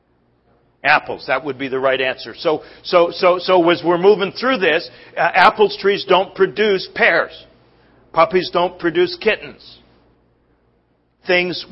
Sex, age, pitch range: male, 40-59, 120-180 Hz